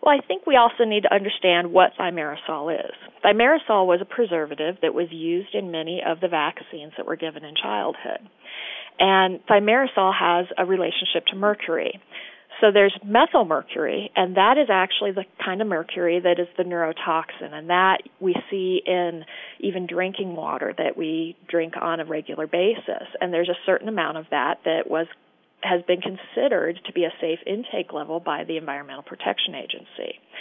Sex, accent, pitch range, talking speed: female, American, 170-210 Hz, 175 wpm